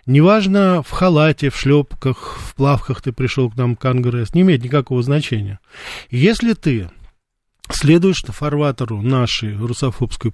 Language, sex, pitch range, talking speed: Russian, male, 120-160 Hz, 135 wpm